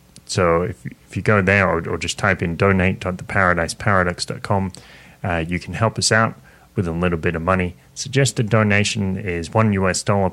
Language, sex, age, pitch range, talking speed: English, male, 30-49, 90-110 Hz, 175 wpm